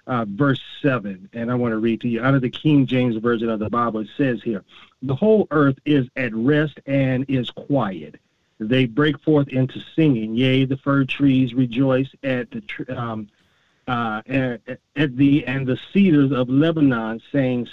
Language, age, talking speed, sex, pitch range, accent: English, 40-59, 185 wpm, male, 125-155 Hz, American